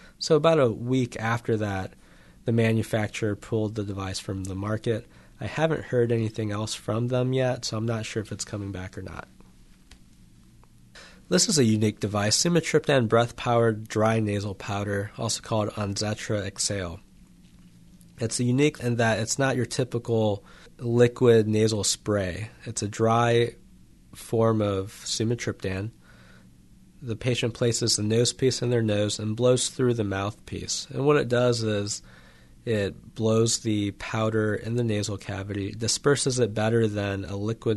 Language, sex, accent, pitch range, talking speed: English, male, American, 100-120 Hz, 155 wpm